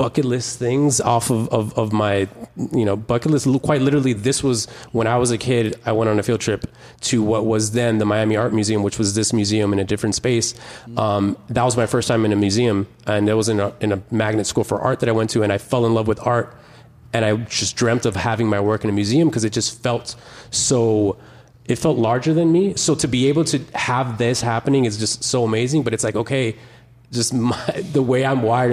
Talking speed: 240 wpm